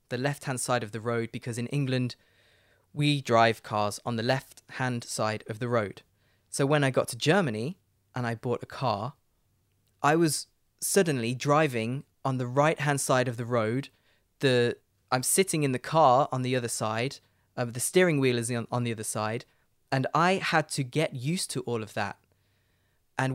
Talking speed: 185 wpm